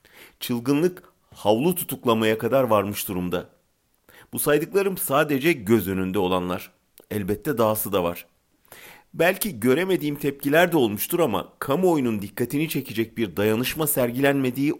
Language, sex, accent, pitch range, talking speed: German, male, Turkish, 105-140 Hz, 115 wpm